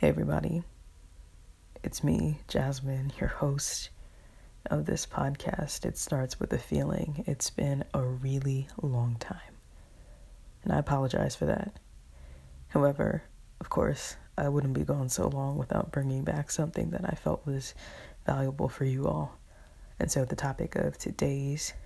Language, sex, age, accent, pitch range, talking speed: English, female, 20-39, American, 115-150 Hz, 145 wpm